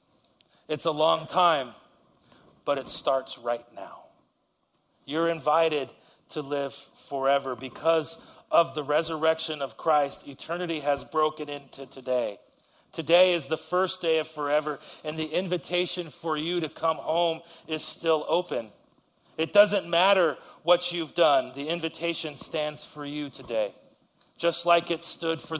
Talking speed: 140 wpm